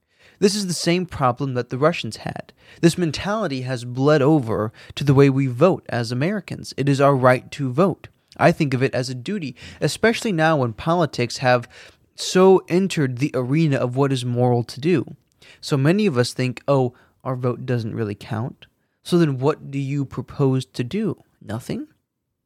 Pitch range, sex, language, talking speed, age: 120-160 Hz, male, English, 185 wpm, 20-39